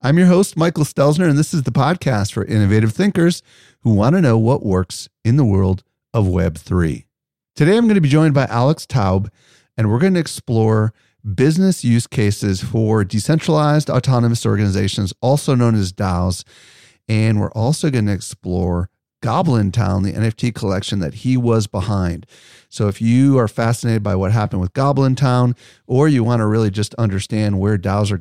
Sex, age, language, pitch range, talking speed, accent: male, 40-59, English, 100-135 Hz, 180 wpm, American